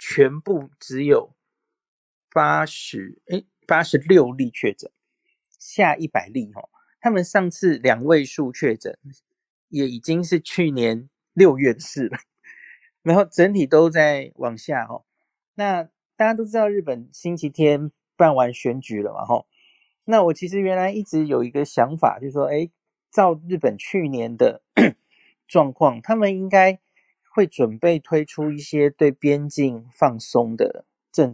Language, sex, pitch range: Chinese, male, 145-200 Hz